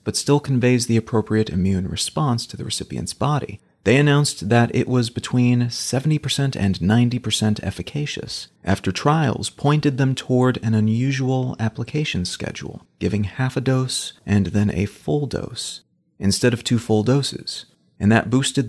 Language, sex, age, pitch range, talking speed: English, male, 30-49, 105-130 Hz, 150 wpm